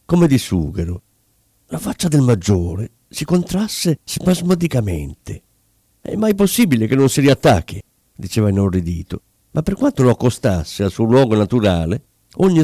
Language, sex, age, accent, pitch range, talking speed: Italian, male, 50-69, native, 100-145 Hz, 140 wpm